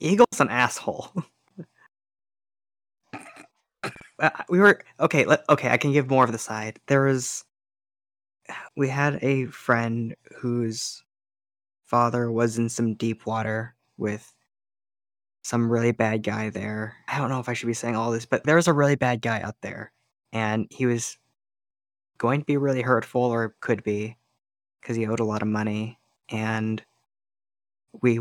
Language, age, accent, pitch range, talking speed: English, 20-39, American, 110-125 Hz, 155 wpm